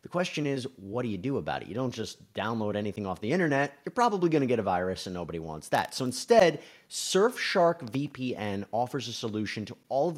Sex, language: male, English